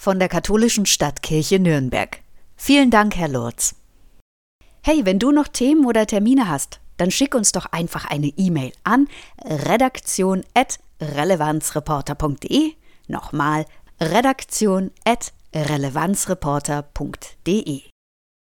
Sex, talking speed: female, 90 wpm